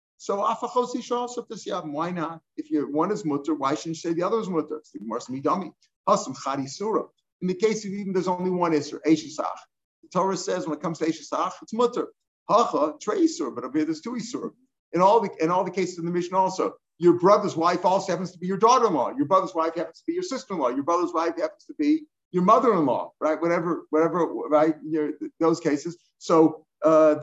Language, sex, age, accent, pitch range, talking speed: English, male, 50-69, American, 155-210 Hz, 185 wpm